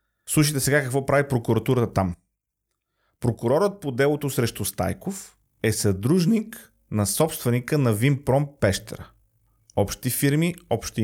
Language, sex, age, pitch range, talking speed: Bulgarian, male, 40-59, 110-150 Hz, 115 wpm